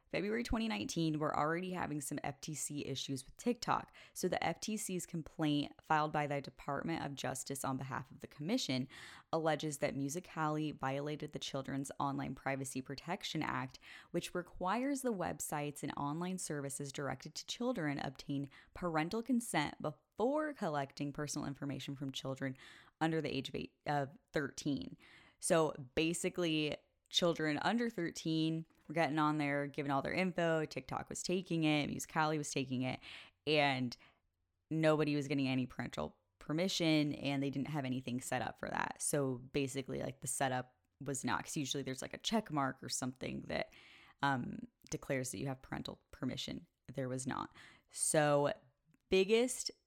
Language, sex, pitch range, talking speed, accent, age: English, female, 140-175 Hz, 150 wpm, American, 10-29